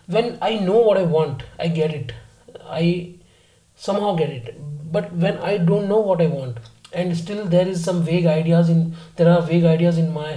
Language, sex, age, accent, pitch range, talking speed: Hindi, male, 30-49, native, 150-175 Hz, 215 wpm